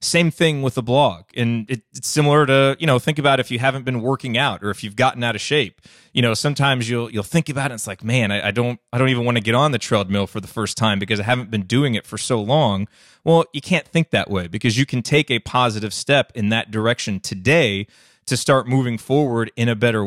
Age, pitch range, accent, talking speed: 20-39, 115-140 Hz, American, 255 wpm